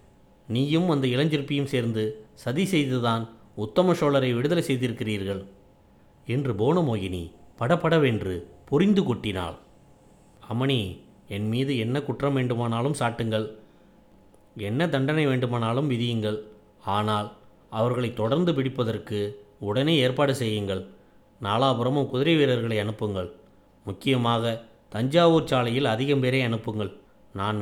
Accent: native